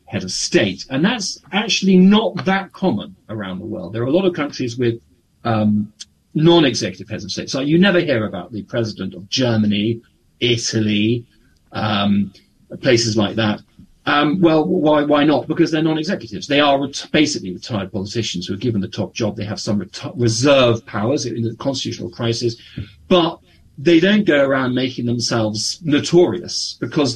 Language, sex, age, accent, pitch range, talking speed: English, male, 40-59, British, 110-155 Hz, 165 wpm